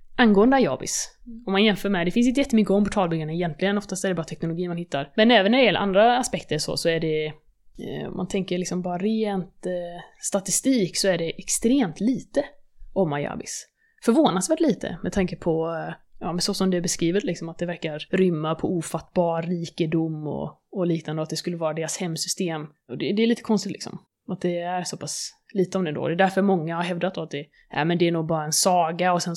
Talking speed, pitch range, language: 225 wpm, 165-200 Hz, Swedish